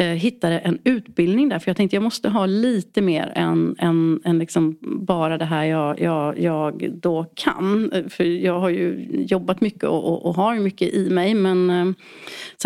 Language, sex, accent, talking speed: Swedish, female, native, 190 wpm